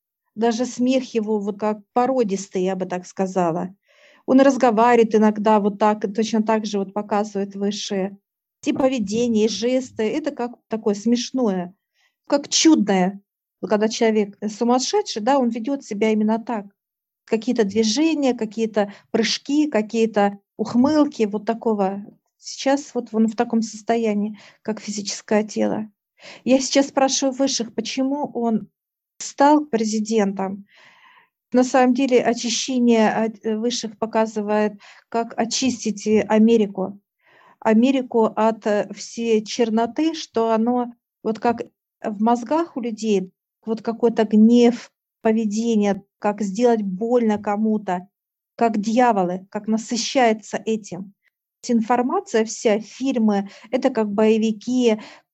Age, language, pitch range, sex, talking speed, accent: 50-69, Russian, 210-245 Hz, female, 115 wpm, native